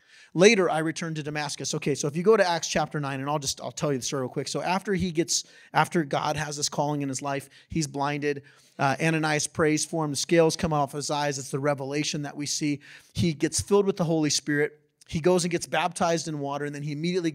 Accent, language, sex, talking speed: American, English, male, 255 wpm